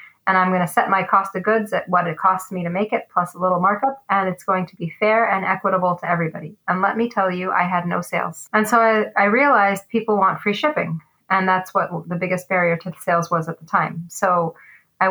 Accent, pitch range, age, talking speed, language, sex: American, 170-200 Hz, 30-49, 250 wpm, English, female